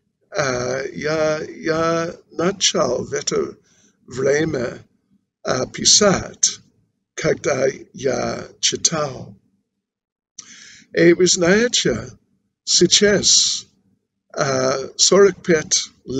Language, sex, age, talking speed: Russian, male, 60-79, 65 wpm